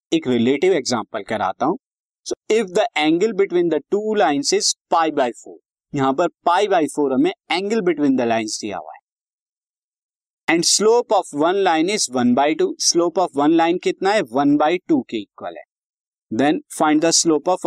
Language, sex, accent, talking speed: Hindi, male, native, 40 wpm